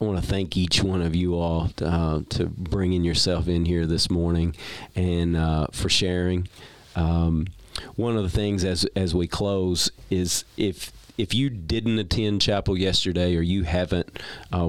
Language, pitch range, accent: English, 85-95 Hz, American